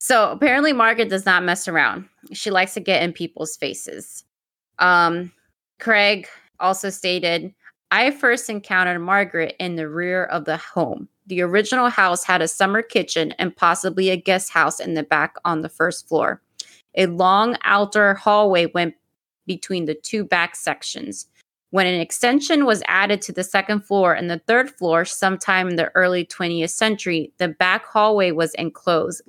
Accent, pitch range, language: American, 170-195 Hz, English